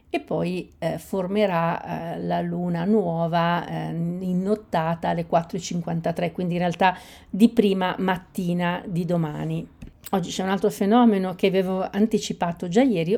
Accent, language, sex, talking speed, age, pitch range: native, Italian, female, 140 wpm, 50-69, 175-220 Hz